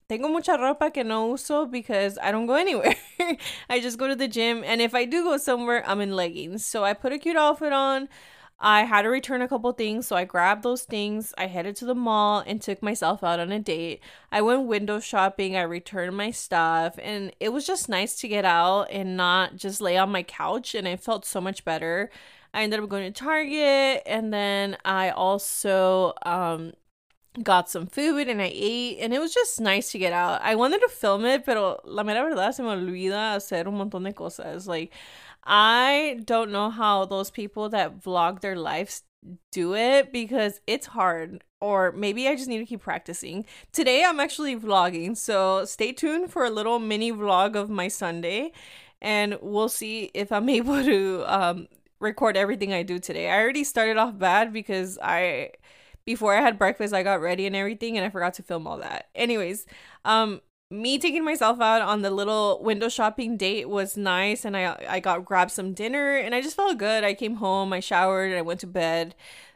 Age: 20-39